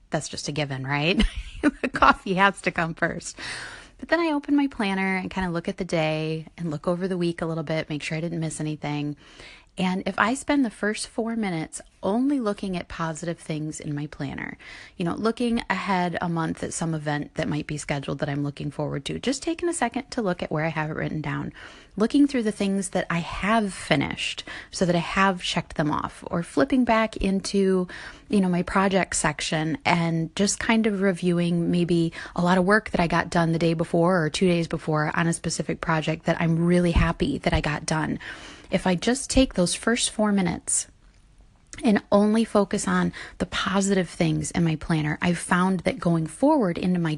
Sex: female